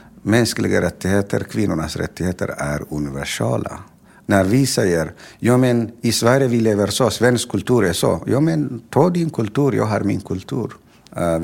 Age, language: 50-69, English